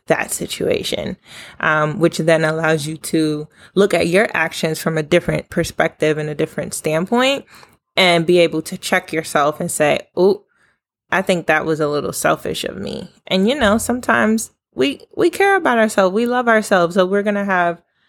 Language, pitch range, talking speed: English, 160-185 Hz, 185 wpm